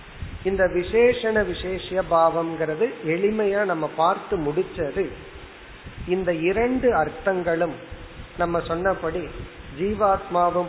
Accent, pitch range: native, 155-195 Hz